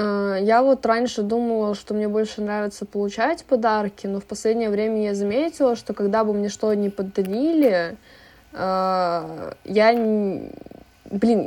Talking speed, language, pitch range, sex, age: 130 wpm, Russian, 195-230 Hz, female, 20-39